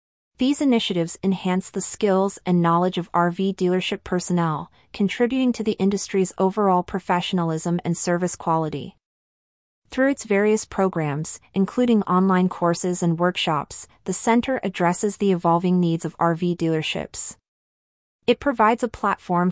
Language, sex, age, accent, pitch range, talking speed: English, female, 30-49, American, 170-205 Hz, 130 wpm